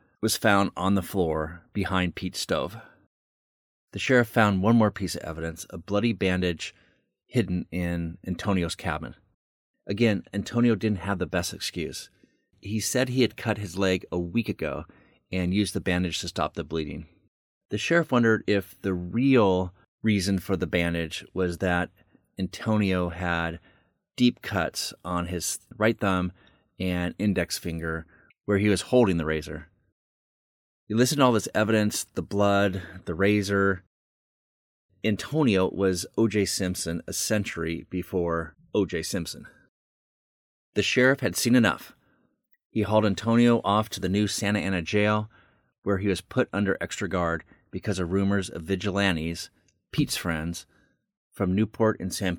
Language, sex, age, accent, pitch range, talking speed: English, male, 30-49, American, 85-105 Hz, 150 wpm